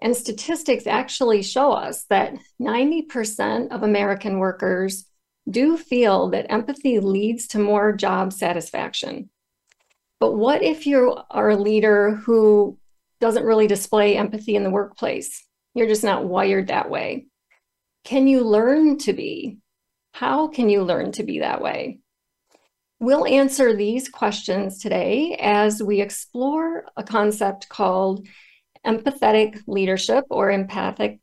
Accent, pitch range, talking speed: American, 205-250 Hz, 130 wpm